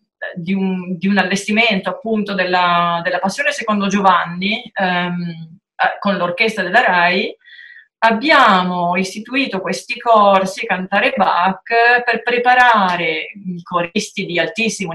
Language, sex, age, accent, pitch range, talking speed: Italian, female, 30-49, native, 180-220 Hz, 110 wpm